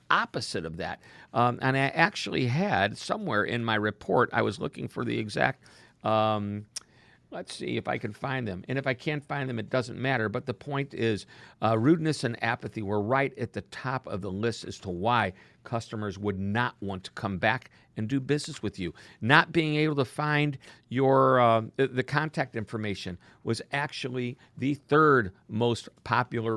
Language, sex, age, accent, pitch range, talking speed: English, male, 50-69, American, 110-135 Hz, 185 wpm